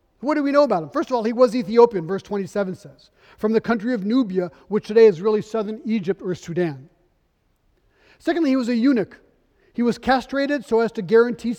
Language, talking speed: English, 205 wpm